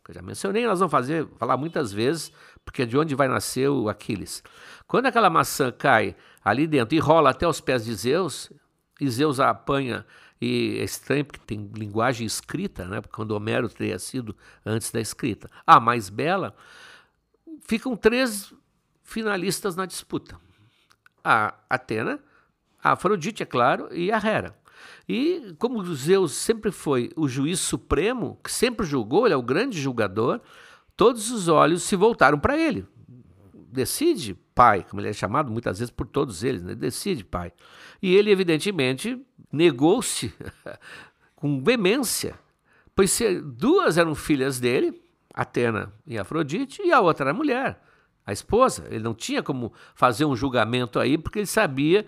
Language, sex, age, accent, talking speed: Portuguese, male, 60-79, Brazilian, 155 wpm